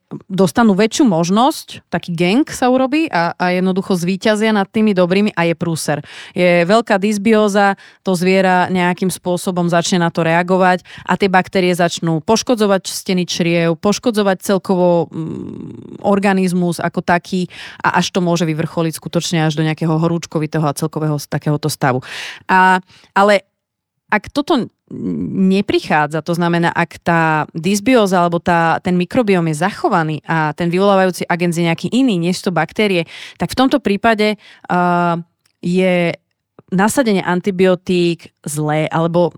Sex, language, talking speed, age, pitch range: female, Slovak, 140 wpm, 30-49, 170-200 Hz